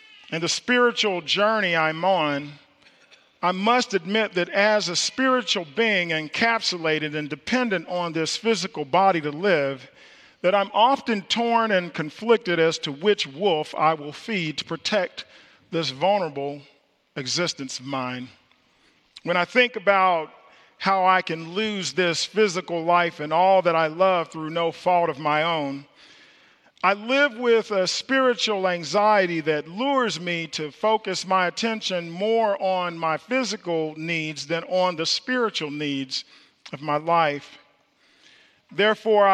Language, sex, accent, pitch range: English, male, American, 160-215 Hz